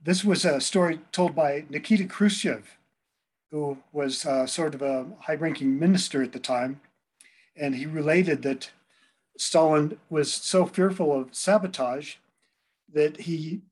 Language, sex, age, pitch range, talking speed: English, male, 50-69, 135-170 Hz, 135 wpm